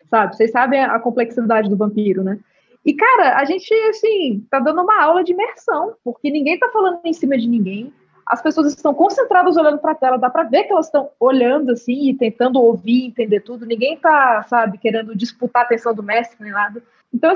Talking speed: 205 wpm